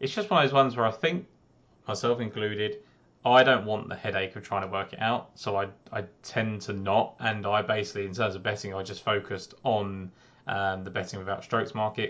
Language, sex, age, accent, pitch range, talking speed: English, male, 20-39, British, 100-115 Hz, 225 wpm